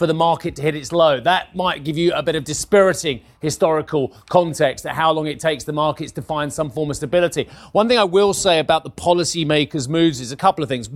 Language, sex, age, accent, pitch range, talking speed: English, male, 30-49, British, 145-170 Hz, 240 wpm